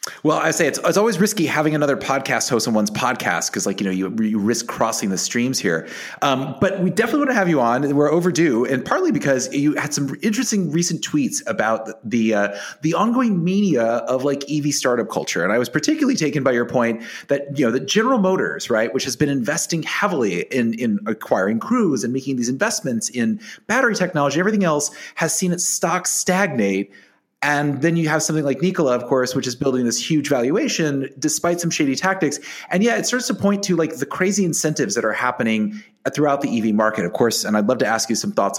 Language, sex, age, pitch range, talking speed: English, male, 30-49, 125-190 Hz, 220 wpm